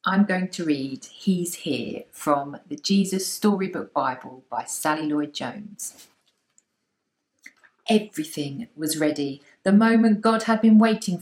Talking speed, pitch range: 130 wpm, 160-210 Hz